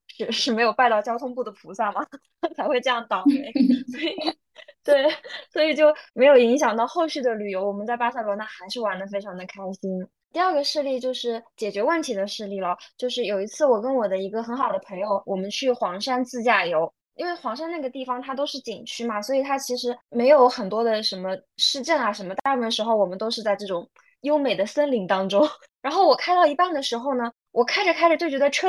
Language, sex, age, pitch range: Chinese, female, 10-29, 205-275 Hz